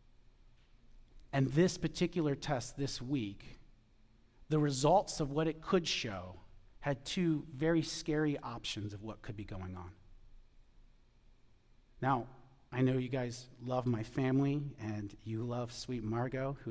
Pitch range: 115-140 Hz